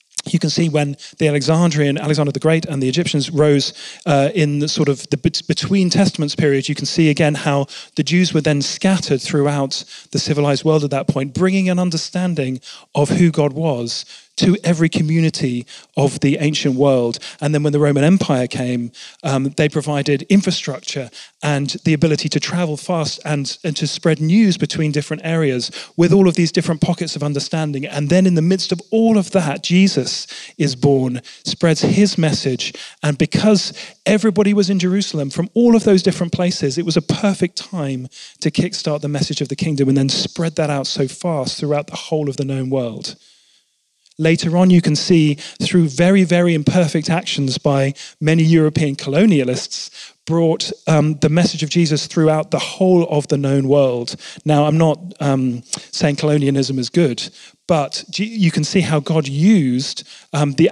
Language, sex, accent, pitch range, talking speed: English, male, British, 145-175 Hz, 180 wpm